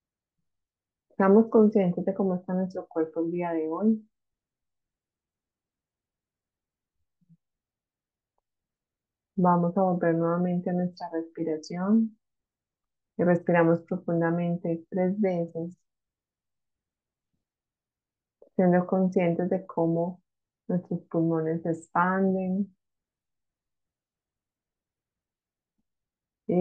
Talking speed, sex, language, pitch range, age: 70 wpm, female, Spanish, 170-190 Hz, 30-49